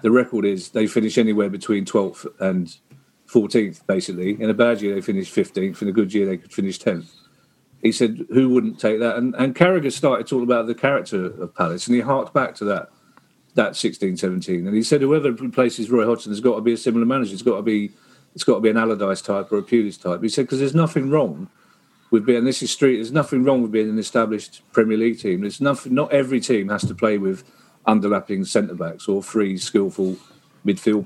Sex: male